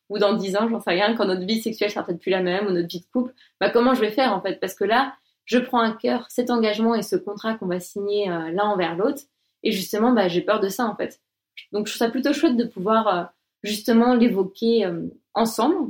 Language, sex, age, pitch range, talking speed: French, female, 20-39, 190-245 Hz, 255 wpm